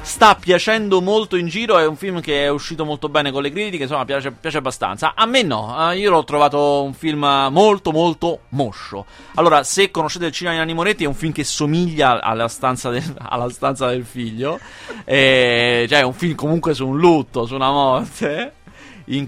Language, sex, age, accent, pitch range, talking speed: Italian, male, 30-49, native, 125-170 Hz, 185 wpm